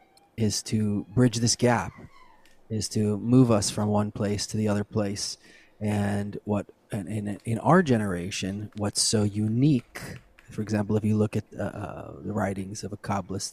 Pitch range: 100-120 Hz